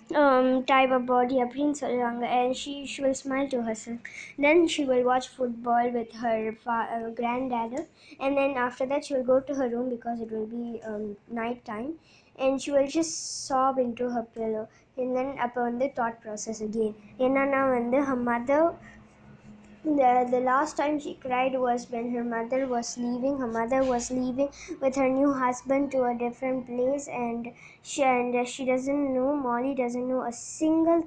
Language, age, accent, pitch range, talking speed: Tamil, 20-39, native, 235-270 Hz, 185 wpm